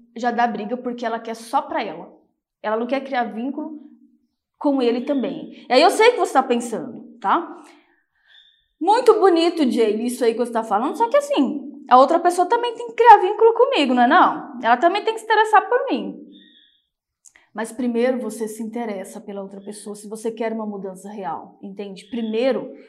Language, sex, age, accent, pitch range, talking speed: Portuguese, female, 20-39, Brazilian, 230-300 Hz, 195 wpm